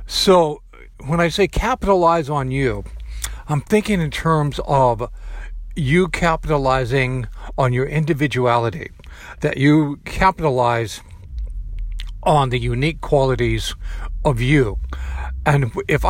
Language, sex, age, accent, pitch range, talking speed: English, male, 50-69, American, 115-160 Hz, 105 wpm